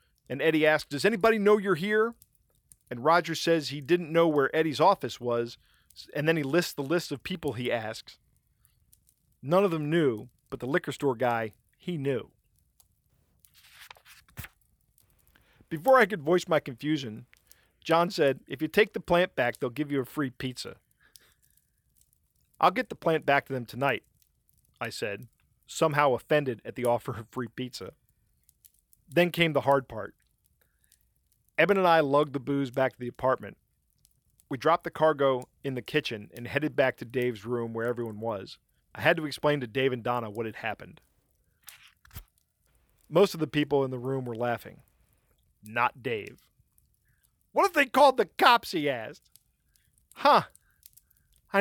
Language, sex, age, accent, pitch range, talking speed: English, male, 40-59, American, 125-170 Hz, 165 wpm